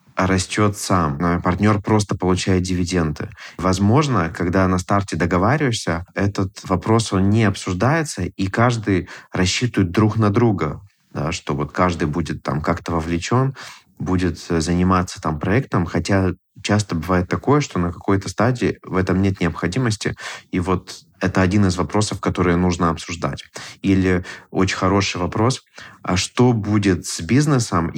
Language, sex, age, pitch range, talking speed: Russian, male, 20-39, 85-105 Hz, 140 wpm